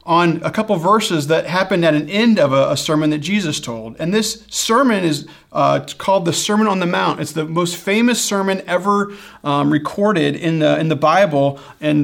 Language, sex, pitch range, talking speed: English, male, 150-195 Hz, 205 wpm